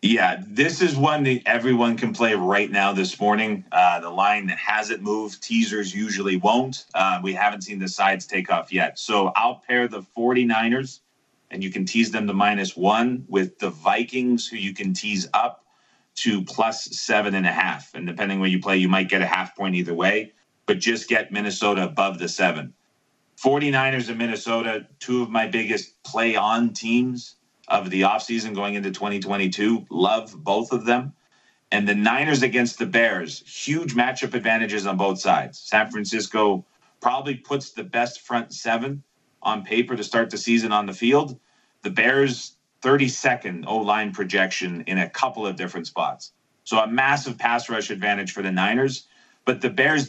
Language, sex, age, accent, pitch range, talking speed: English, male, 30-49, American, 100-130 Hz, 175 wpm